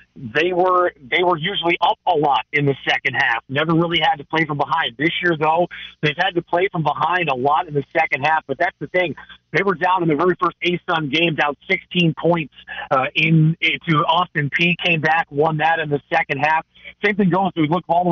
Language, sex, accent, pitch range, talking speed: English, male, American, 145-170 Hz, 235 wpm